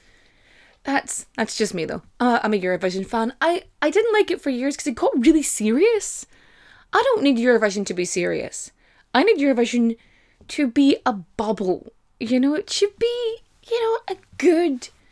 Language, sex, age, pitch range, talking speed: English, female, 20-39, 230-335 Hz, 180 wpm